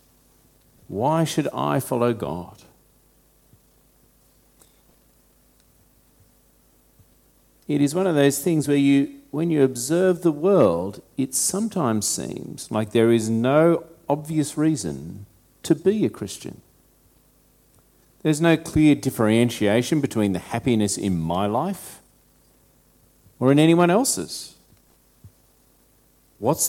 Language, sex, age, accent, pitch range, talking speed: English, male, 50-69, Australian, 100-160 Hz, 105 wpm